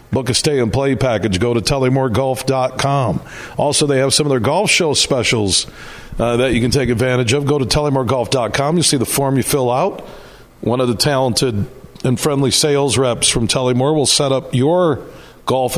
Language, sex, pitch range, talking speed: English, male, 115-140 Hz, 190 wpm